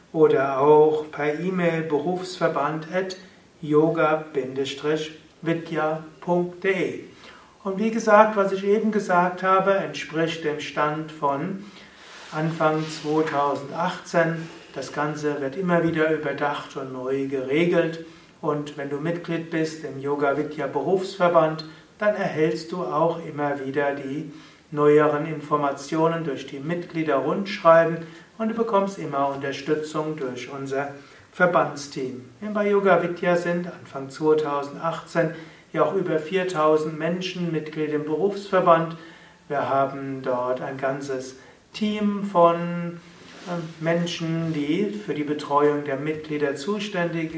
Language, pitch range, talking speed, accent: German, 145-175 Hz, 110 wpm, German